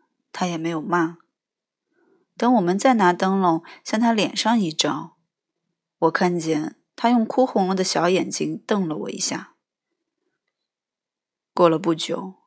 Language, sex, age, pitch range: Chinese, female, 20-39, 180-260 Hz